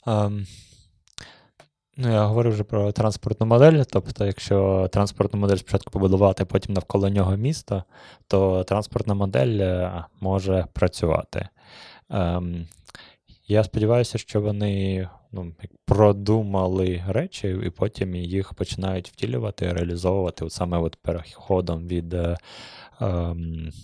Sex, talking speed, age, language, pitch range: male, 110 wpm, 20-39, Ukrainian, 90-105 Hz